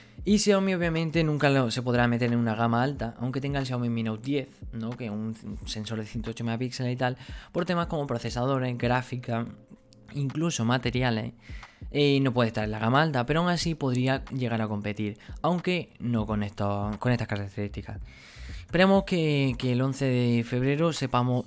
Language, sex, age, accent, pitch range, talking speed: Spanish, male, 20-39, Spanish, 115-150 Hz, 180 wpm